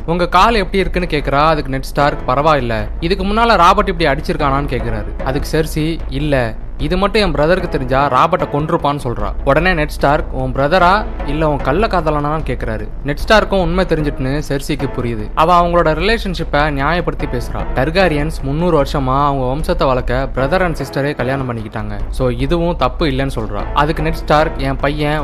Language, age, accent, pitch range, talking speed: Tamil, 20-39, native, 130-170 Hz, 160 wpm